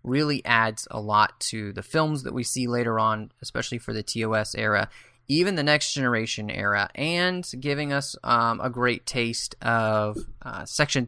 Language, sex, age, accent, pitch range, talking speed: English, male, 20-39, American, 110-130 Hz, 175 wpm